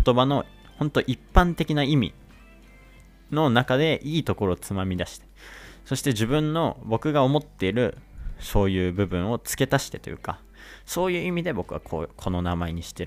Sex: male